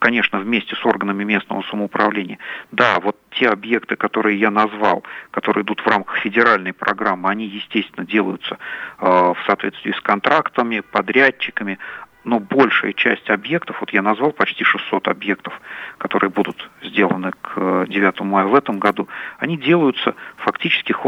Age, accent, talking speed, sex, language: 50-69, native, 140 wpm, male, Russian